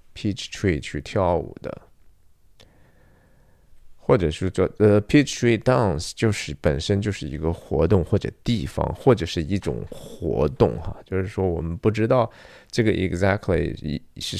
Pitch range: 85-115 Hz